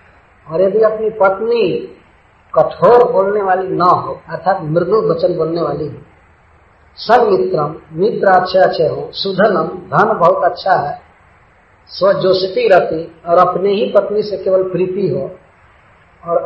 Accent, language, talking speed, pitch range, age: Indian, English, 130 wpm, 160-205 Hz, 40-59